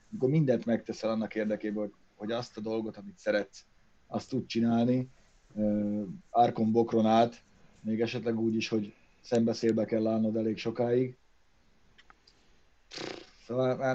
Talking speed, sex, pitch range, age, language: 115 wpm, male, 110-130 Hz, 30-49, Hungarian